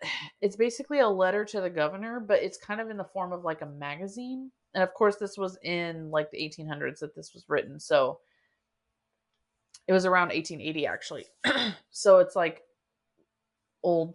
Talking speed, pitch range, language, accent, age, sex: 175 wpm, 160-200 Hz, English, American, 30-49, female